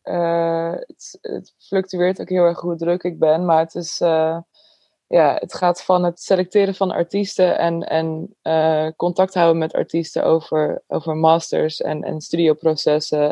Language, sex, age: Dutch, female, 20-39